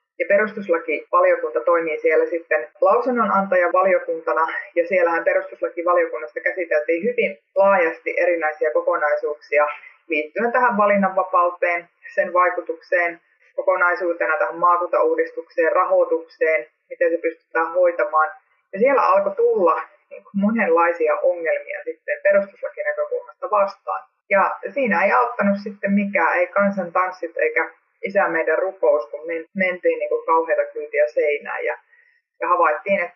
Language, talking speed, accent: Finnish, 110 wpm, native